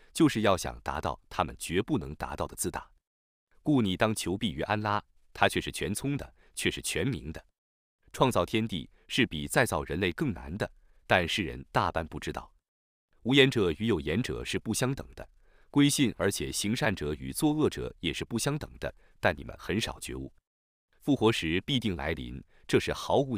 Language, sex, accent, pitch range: Chinese, male, native, 75-120 Hz